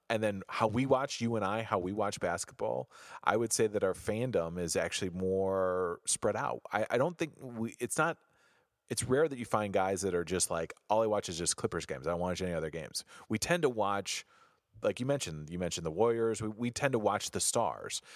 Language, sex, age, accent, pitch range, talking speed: English, male, 30-49, American, 95-115 Hz, 245 wpm